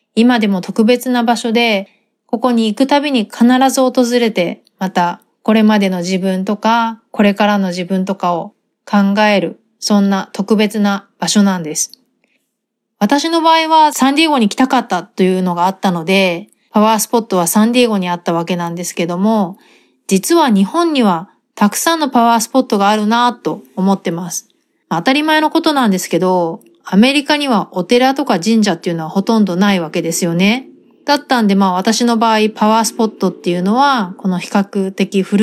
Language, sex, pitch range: Japanese, female, 185-235 Hz